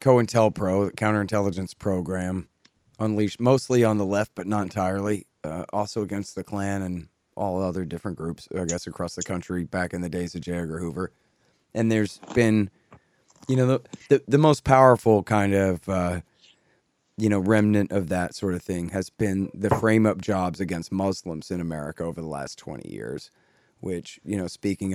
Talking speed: 180 wpm